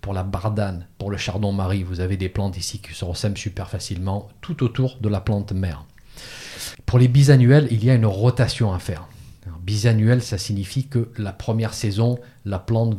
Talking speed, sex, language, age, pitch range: 195 wpm, male, French, 40-59, 100-120 Hz